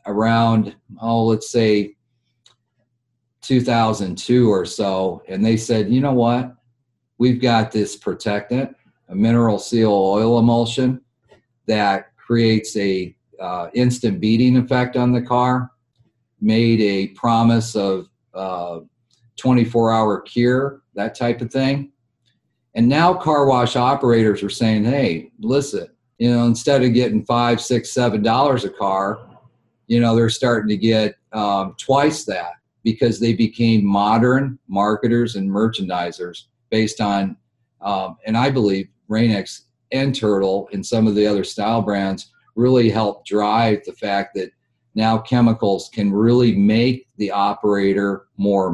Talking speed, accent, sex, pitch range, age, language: 135 wpm, American, male, 105-125 Hz, 40-59, English